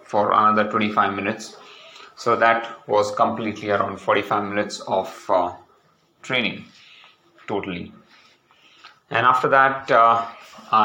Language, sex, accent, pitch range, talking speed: English, male, Indian, 105-115 Hz, 105 wpm